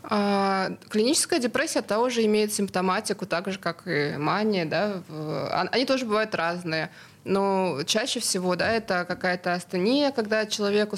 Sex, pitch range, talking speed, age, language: female, 185-215 Hz, 130 wpm, 20-39, Russian